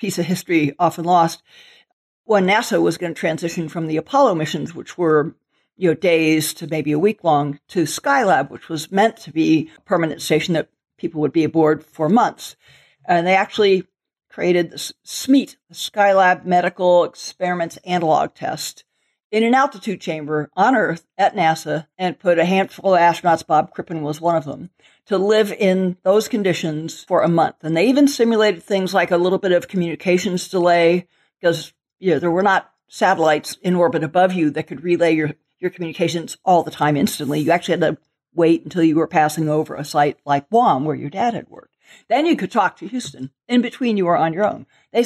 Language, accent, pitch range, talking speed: English, American, 160-195 Hz, 195 wpm